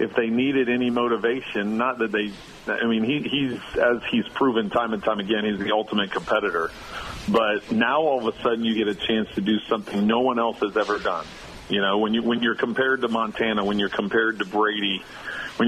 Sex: male